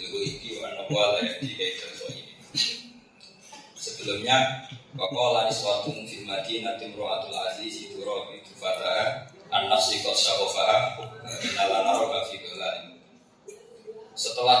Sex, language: male, Indonesian